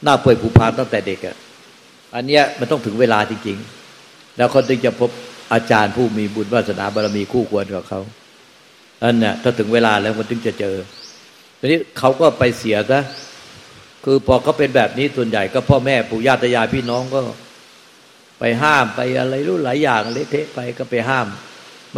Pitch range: 115-135 Hz